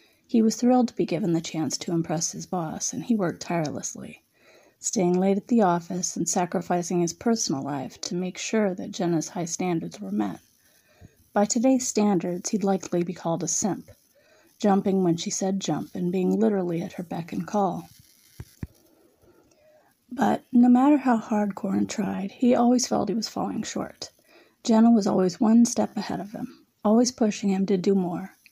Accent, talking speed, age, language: American, 180 wpm, 30-49, English